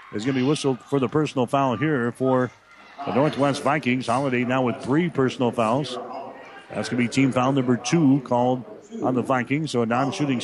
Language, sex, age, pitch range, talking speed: English, male, 50-69, 125-140 Hz, 200 wpm